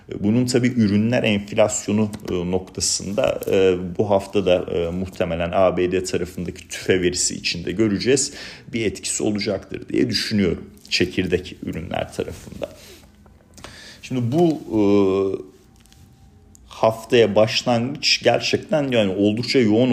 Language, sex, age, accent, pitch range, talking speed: Turkish, male, 40-59, native, 90-110 Hz, 90 wpm